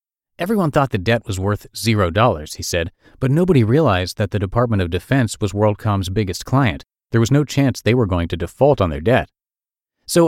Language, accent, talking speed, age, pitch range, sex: English, American, 200 wpm, 40-59, 95-135 Hz, male